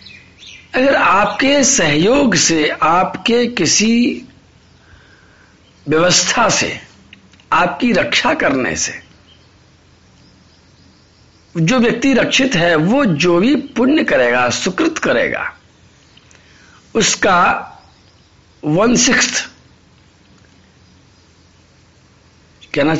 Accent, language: native, Hindi